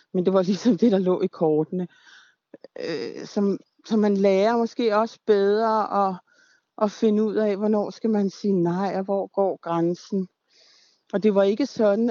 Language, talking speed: Danish, 180 wpm